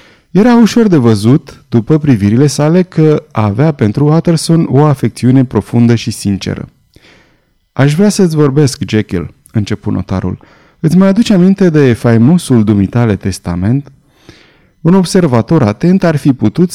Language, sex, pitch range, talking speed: Romanian, male, 110-155 Hz, 135 wpm